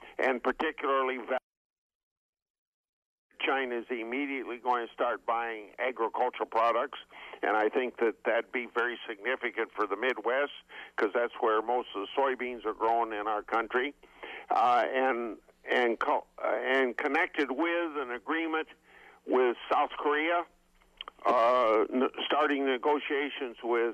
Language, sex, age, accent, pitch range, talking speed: English, male, 60-79, American, 125-155 Hz, 125 wpm